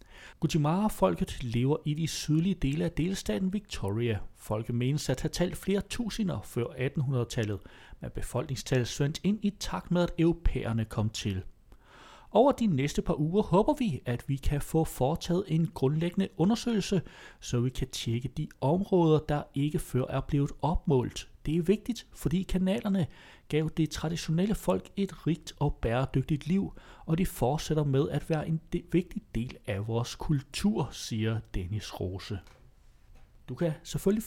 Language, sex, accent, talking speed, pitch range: Danish, male, native, 155 wpm, 125-180 Hz